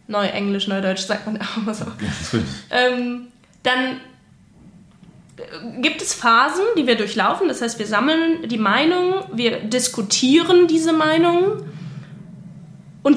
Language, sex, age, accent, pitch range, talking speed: German, female, 20-39, German, 215-280 Hz, 125 wpm